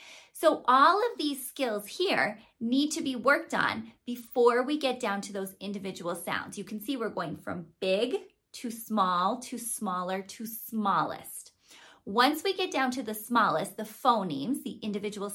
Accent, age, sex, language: American, 20-39, female, English